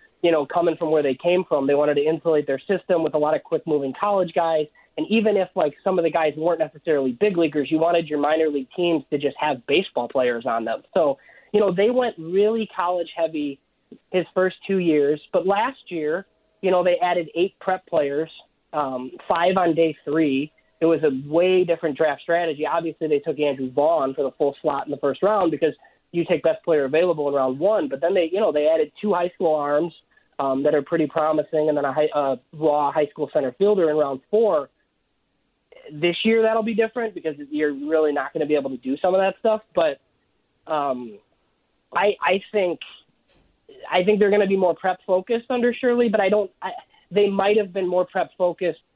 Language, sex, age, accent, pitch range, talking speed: English, male, 30-49, American, 150-185 Hz, 215 wpm